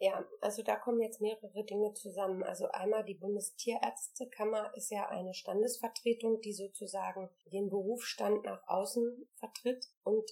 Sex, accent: female, German